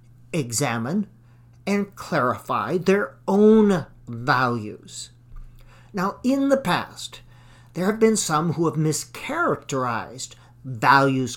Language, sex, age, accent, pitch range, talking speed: English, male, 50-69, American, 120-185 Hz, 95 wpm